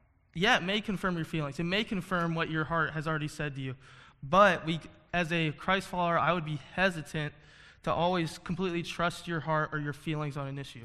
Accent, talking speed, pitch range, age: American, 215 wpm, 155-185 Hz, 20-39